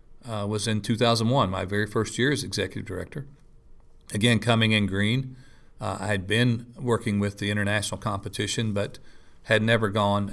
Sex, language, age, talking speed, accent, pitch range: male, English, 40-59, 165 wpm, American, 100-115 Hz